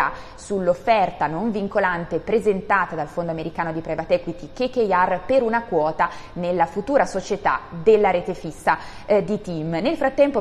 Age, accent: 20-39, native